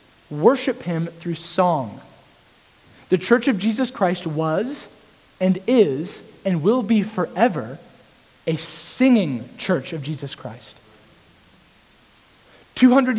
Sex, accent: male, American